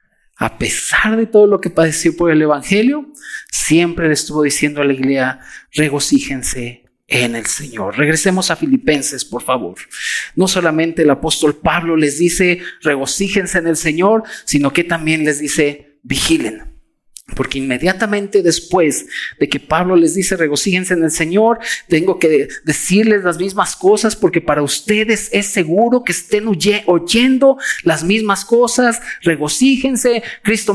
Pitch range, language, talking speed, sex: 165-240 Hz, Spanish, 145 wpm, male